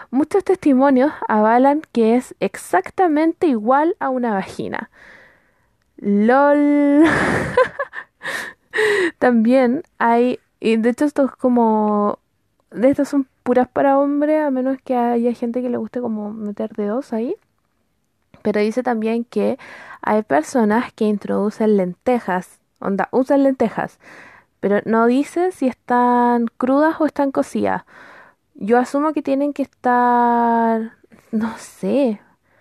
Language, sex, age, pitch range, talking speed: Spanish, female, 20-39, 225-275 Hz, 120 wpm